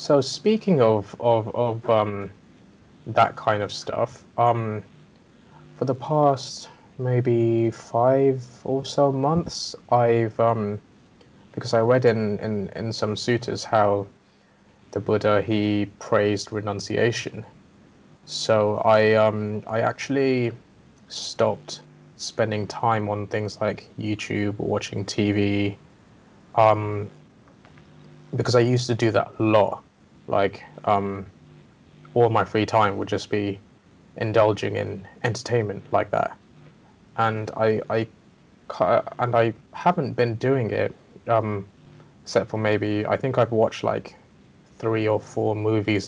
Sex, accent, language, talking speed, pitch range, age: male, British, English, 125 wpm, 105-120 Hz, 20-39